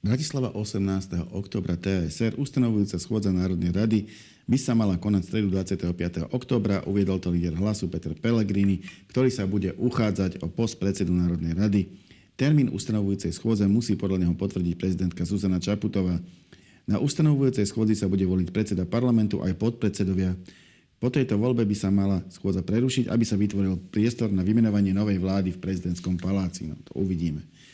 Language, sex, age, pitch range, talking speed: Slovak, male, 50-69, 90-110 Hz, 160 wpm